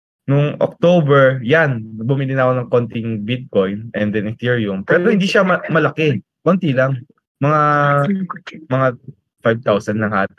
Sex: male